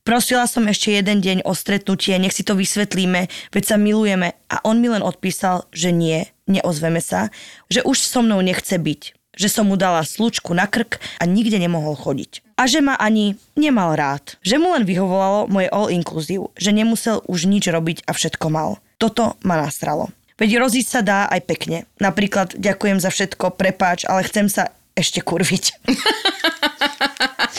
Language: Slovak